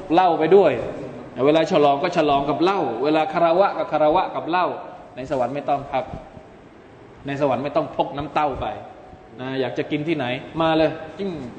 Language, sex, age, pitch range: Thai, male, 20-39, 115-150 Hz